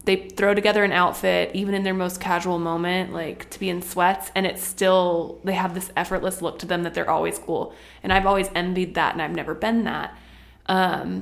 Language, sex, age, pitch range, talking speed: English, female, 20-39, 175-205 Hz, 220 wpm